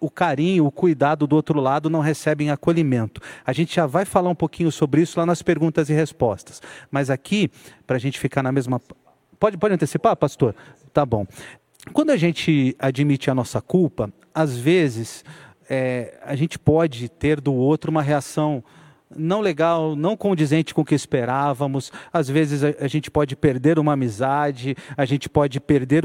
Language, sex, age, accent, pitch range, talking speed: Portuguese, male, 40-59, Brazilian, 135-175 Hz, 175 wpm